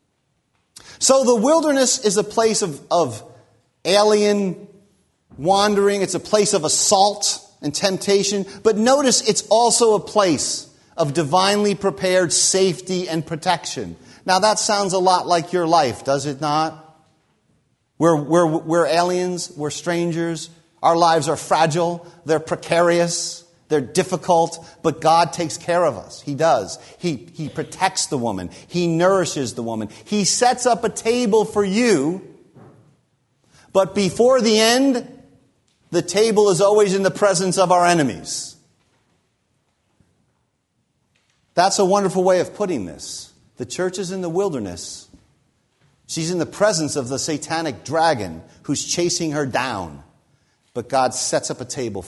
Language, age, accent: English, 40-59, American